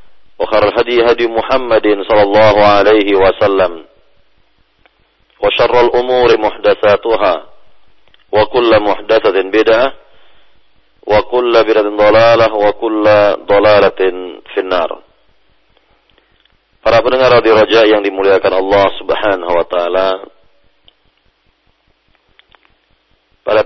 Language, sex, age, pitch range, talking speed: Indonesian, male, 40-59, 100-120 Hz, 40 wpm